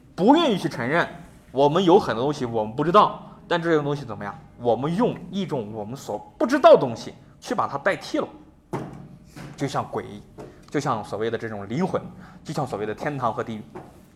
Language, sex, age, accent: Chinese, male, 20-39, native